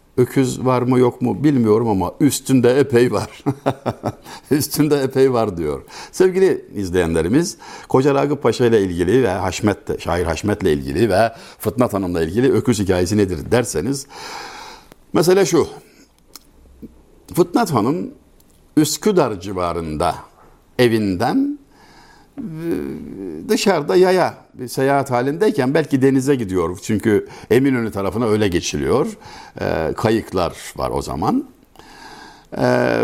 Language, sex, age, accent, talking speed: Turkish, male, 60-79, native, 115 wpm